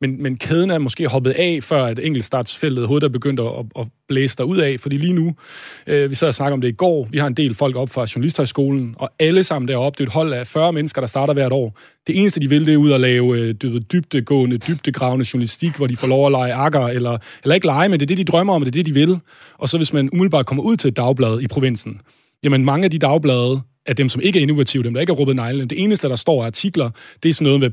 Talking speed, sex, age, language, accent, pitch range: 275 wpm, male, 30-49, Danish, native, 125-150 Hz